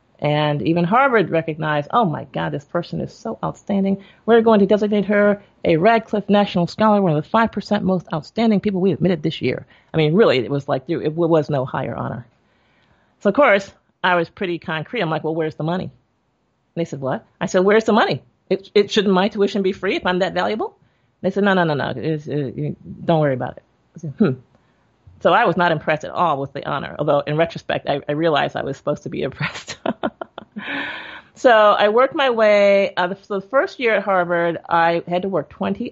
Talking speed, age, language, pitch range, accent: 220 wpm, 40-59, English, 150-195 Hz, American